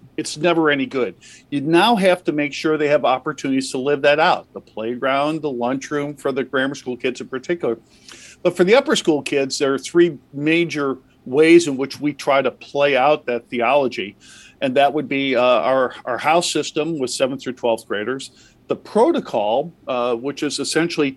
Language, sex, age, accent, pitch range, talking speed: English, male, 50-69, American, 130-155 Hz, 195 wpm